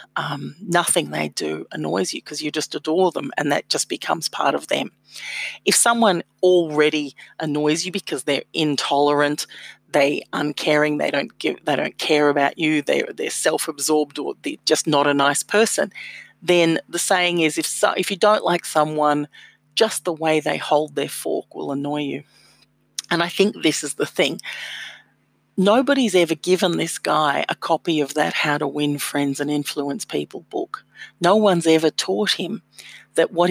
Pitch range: 150-185 Hz